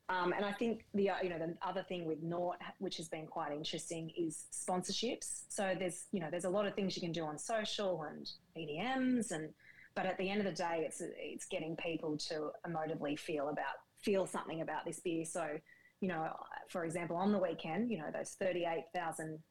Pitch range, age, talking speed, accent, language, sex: 165-195 Hz, 20-39, 215 wpm, Australian, English, female